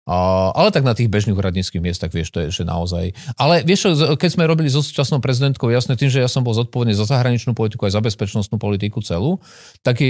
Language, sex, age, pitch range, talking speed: Slovak, male, 40-59, 100-125 Hz, 220 wpm